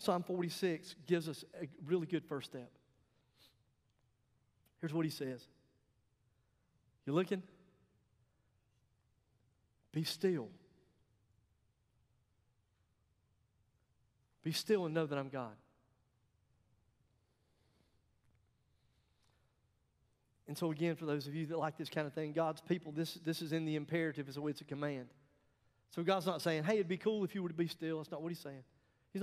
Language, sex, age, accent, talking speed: English, male, 50-69, American, 150 wpm